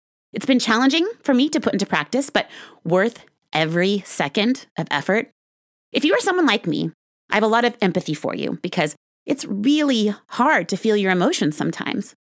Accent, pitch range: American, 170-250 Hz